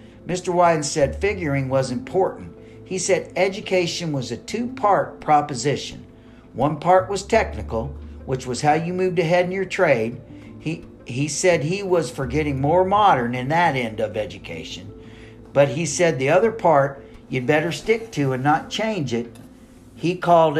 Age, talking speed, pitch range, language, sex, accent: 50-69, 165 wpm, 120-175 Hz, English, male, American